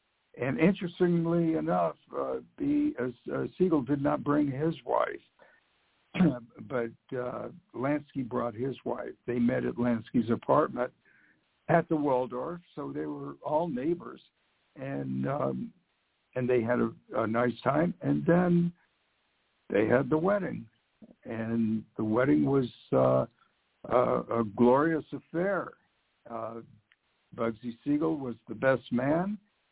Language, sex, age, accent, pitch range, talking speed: English, male, 60-79, American, 115-155 Hz, 120 wpm